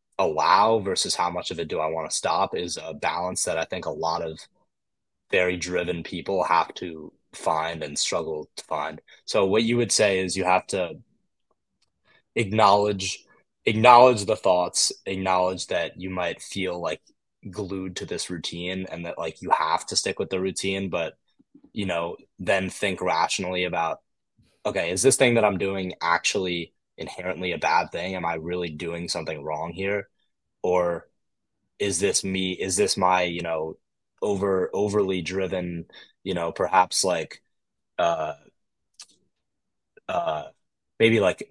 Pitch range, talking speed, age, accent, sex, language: 85-95 Hz, 160 wpm, 20-39, American, male, English